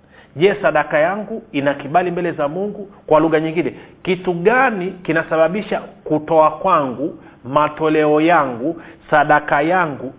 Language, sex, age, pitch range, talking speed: Swahili, male, 40-59, 140-195 Hz, 125 wpm